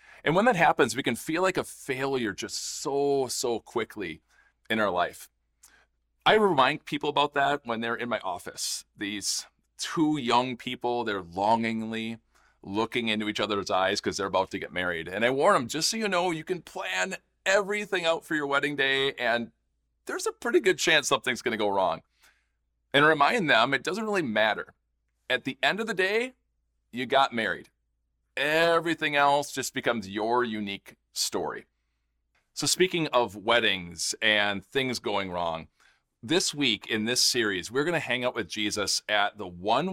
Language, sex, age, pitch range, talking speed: English, male, 40-59, 105-155 Hz, 175 wpm